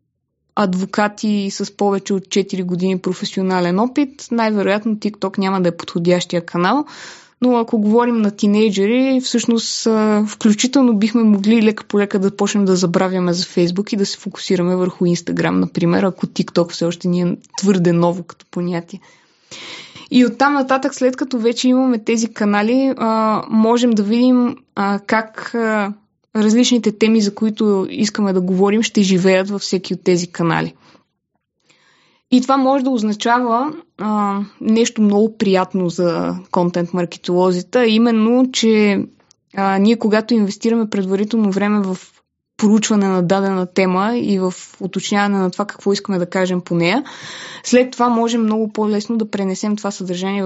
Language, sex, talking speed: Bulgarian, female, 145 wpm